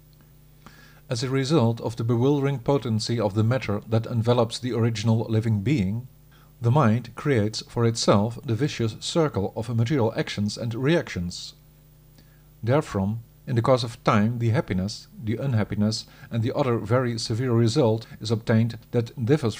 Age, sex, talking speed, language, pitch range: 50-69, male, 150 wpm, English, 115-145 Hz